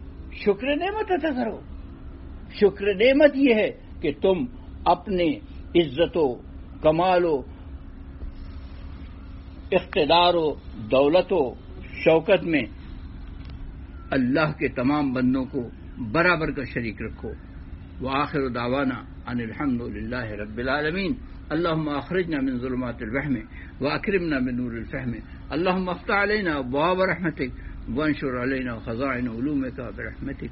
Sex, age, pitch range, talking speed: male, 60-79, 115-150 Hz, 100 wpm